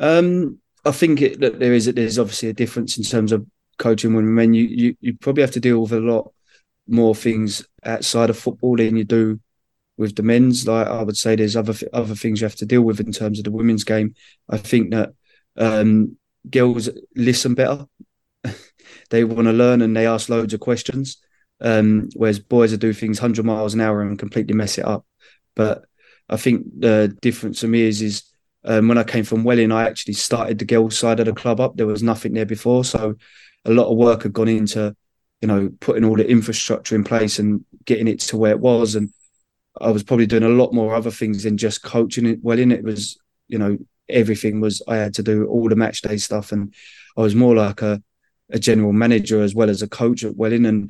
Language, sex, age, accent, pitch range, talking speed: English, male, 20-39, British, 110-115 Hz, 225 wpm